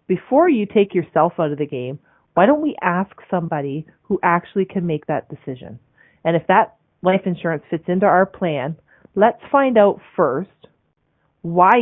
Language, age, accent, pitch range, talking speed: English, 30-49, American, 160-195 Hz, 170 wpm